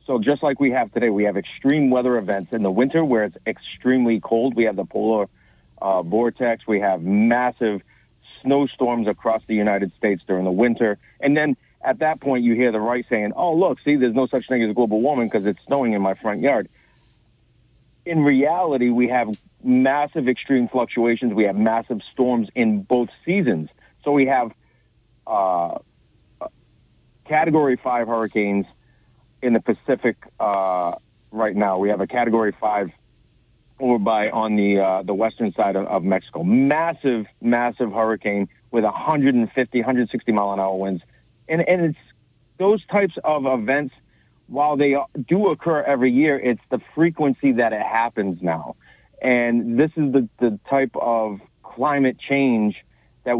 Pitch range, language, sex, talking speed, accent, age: 110-135 Hz, English, male, 165 wpm, American, 40-59